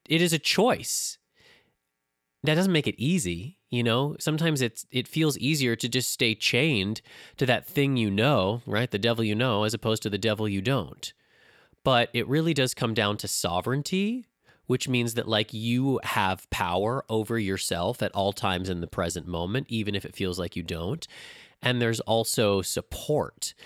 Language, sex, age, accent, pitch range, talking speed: English, male, 30-49, American, 100-130 Hz, 185 wpm